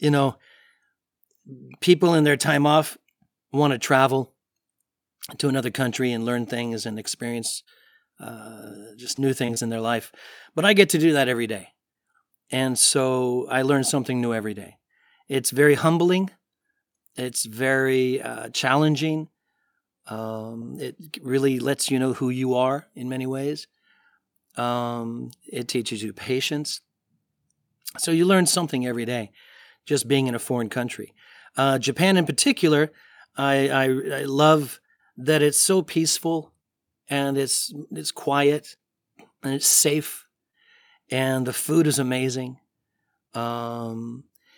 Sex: male